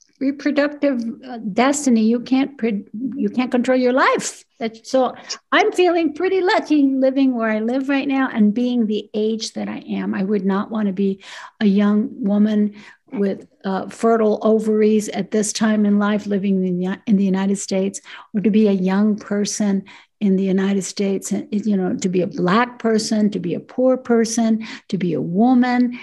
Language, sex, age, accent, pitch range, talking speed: English, female, 60-79, American, 195-250 Hz, 185 wpm